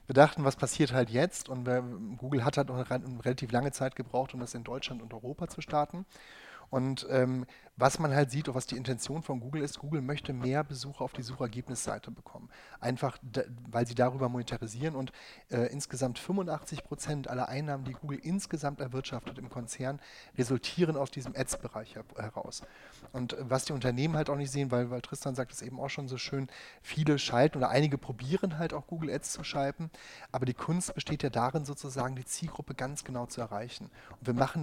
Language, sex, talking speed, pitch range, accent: German, male, 200 wpm, 125-145 Hz, German